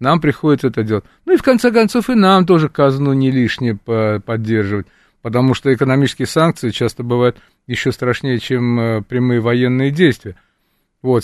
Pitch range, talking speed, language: 120-160 Hz, 155 wpm, Russian